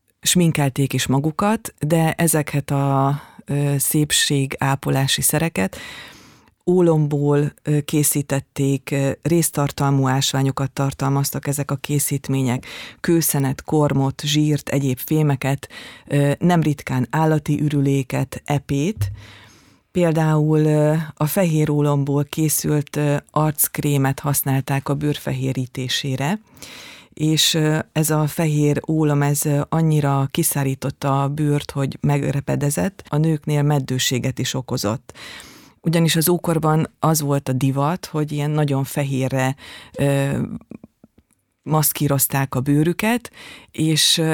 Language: Hungarian